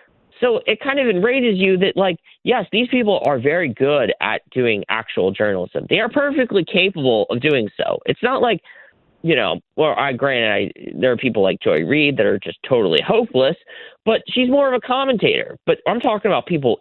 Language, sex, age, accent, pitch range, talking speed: English, male, 30-49, American, 165-255 Hz, 200 wpm